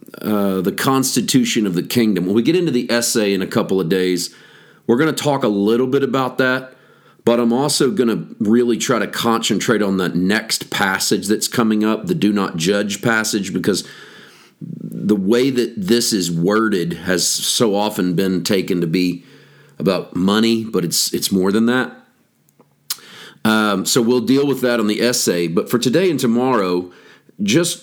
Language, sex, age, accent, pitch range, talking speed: English, male, 40-59, American, 100-130 Hz, 180 wpm